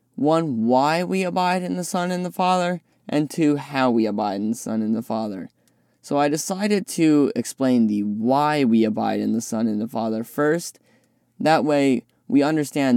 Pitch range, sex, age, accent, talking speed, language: 125-170 Hz, male, 10-29, American, 190 wpm, English